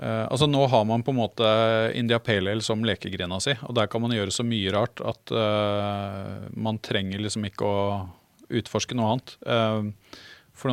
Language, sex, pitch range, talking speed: English, male, 100-120 Hz, 180 wpm